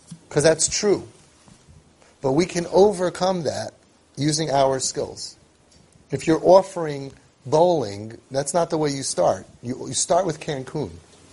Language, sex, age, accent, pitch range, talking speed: English, male, 30-49, American, 130-175 Hz, 140 wpm